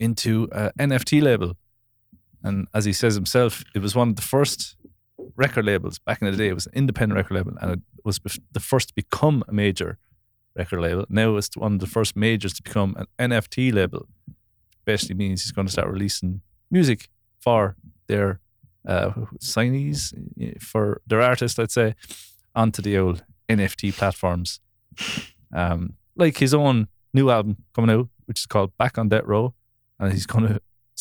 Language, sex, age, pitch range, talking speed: English, male, 30-49, 100-120 Hz, 175 wpm